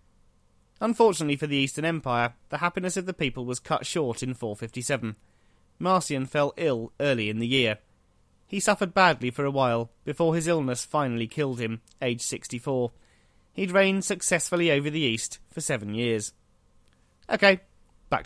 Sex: male